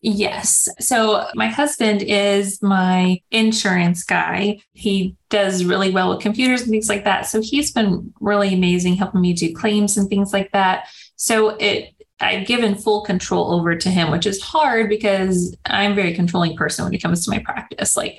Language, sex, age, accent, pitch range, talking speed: English, female, 20-39, American, 180-220 Hz, 185 wpm